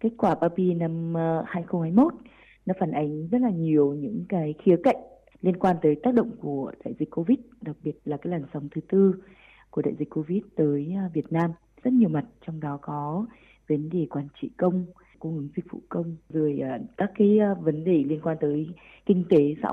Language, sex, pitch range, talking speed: Vietnamese, female, 155-195 Hz, 200 wpm